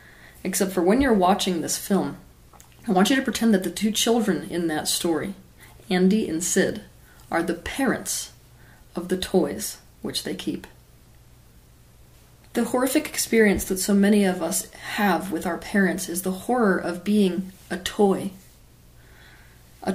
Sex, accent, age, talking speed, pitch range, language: female, American, 30-49, 155 wpm, 165-200 Hz, English